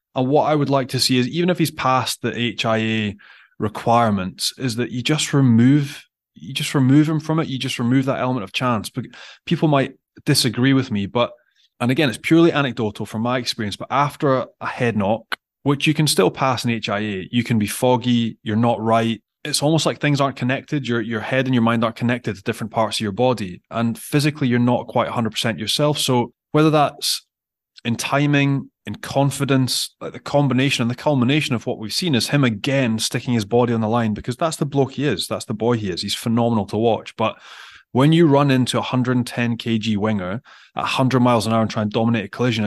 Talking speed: 220 wpm